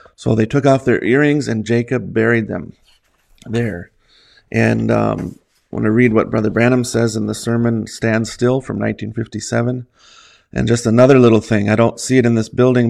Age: 30-49